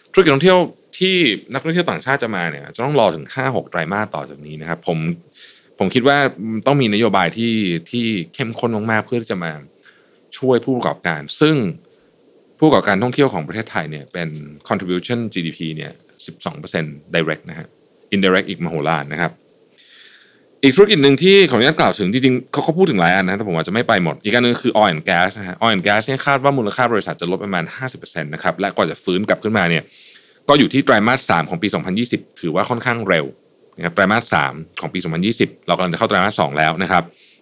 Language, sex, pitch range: Thai, male, 90-130 Hz